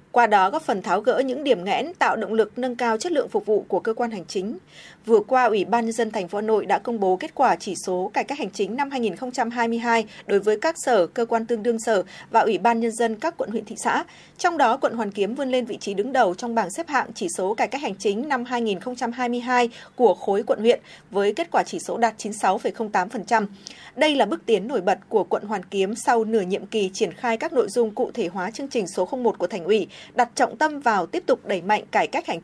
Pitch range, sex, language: 205-255 Hz, female, Vietnamese